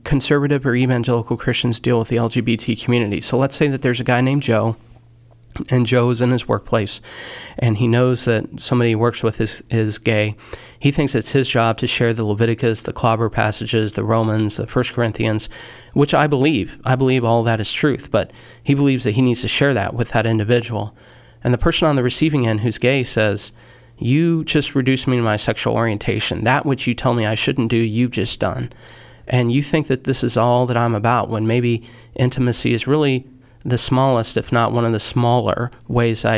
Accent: American